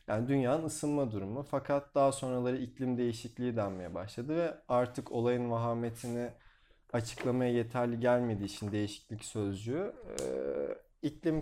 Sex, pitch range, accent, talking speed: male, 110-150 Hz, native, 115 wpm